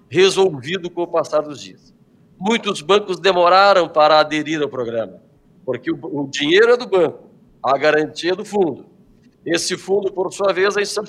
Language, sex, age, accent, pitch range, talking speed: Portuguese, male, 50-69, Brazilian, 150-190 Hz, 170 wpm